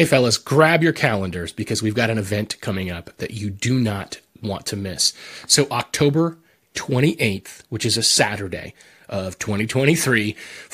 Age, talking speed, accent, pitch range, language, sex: 30-49, 155 wpm, American, 110-135 Hz, English, male